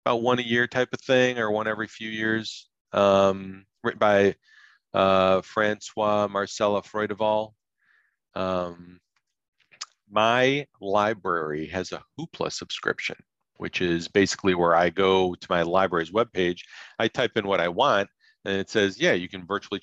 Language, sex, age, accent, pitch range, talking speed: English, male, 40-59, American, 90-110 Hz, 150 wpm